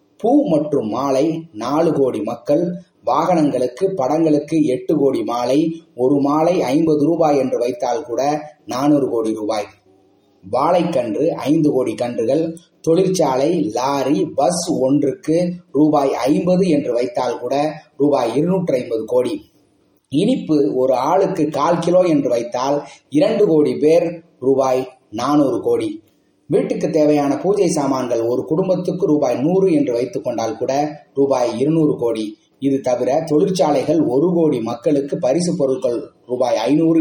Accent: native